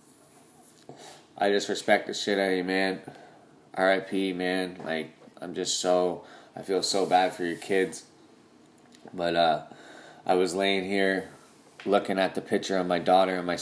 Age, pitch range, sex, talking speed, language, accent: 20-39, 90-100 Hz, male, 165 wpm, English, American